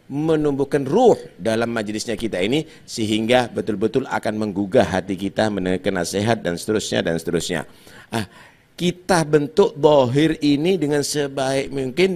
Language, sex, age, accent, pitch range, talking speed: Indonesian, male, 50-69, native, 110-155 Hz, 130 wpm